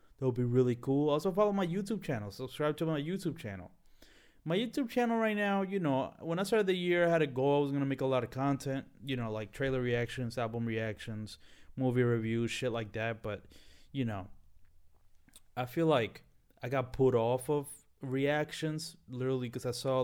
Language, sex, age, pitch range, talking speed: English, male, 20-39, 120-160 Hz, 205 wpm